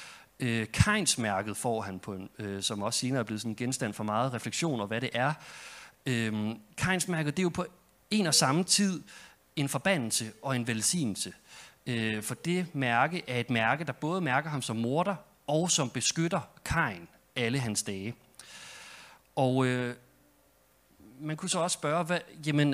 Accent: native